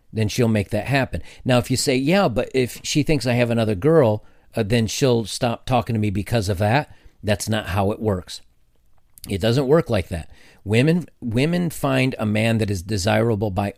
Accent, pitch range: American, 100-130 Hz